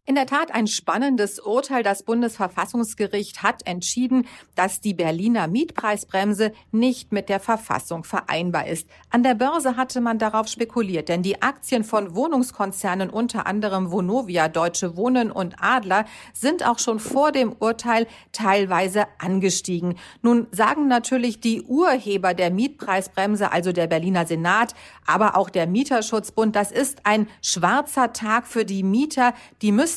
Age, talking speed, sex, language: 50-69, 145 wpm, female, German